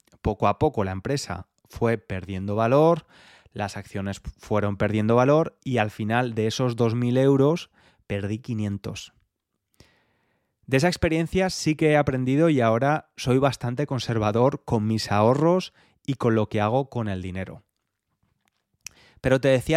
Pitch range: 105-145 Hz